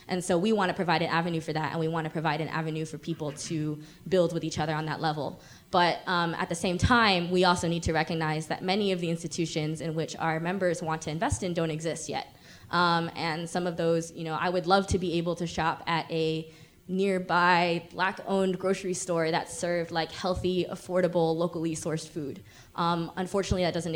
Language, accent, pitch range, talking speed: English, American, 160-175 Hz, 220 wpm